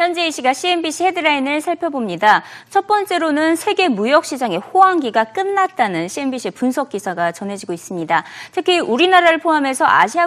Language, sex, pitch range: Korean, female, 215-330 Hz